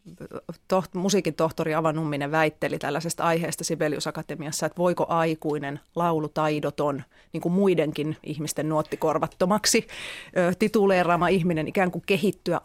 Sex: female